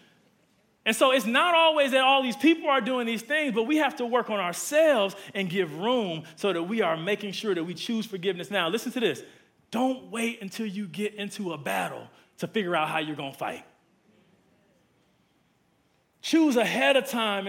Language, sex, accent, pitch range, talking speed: English, male, American, 185-245 Hz, 195 wpm